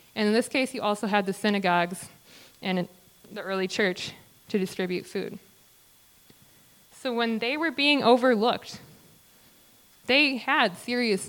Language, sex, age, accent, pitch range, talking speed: English, female, 20-39, American, 190-240 Hz, 135 wpm